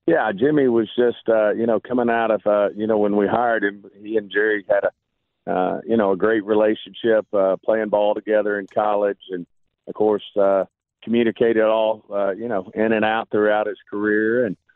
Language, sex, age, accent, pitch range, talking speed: English, male, 40-59, American, 100-110 Hz, 205 wpm